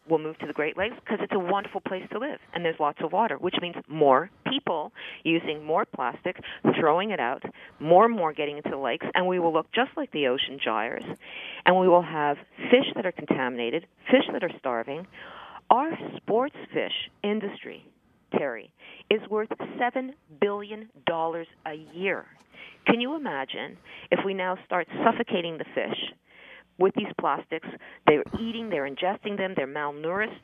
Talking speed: 170 wpm